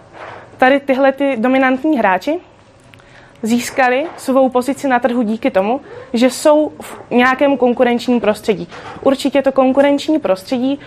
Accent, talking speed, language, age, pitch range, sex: native, 115 wpm, Czech, 20-39, 225-265 Hz, female